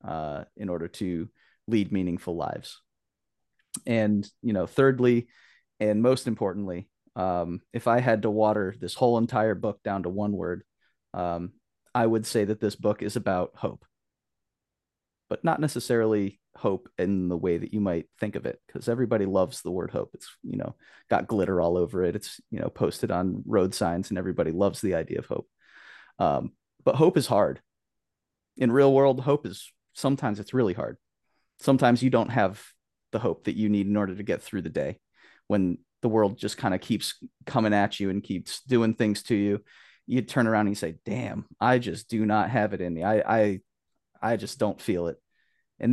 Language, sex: English, male